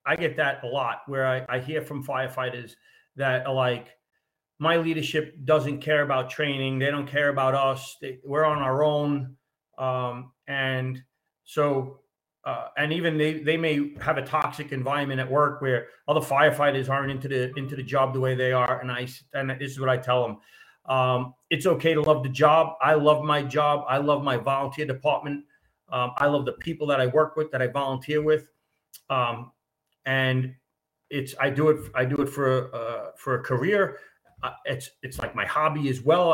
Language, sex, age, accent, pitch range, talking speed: English, male, 40-59, American, 130-155 Hz, 195 wpm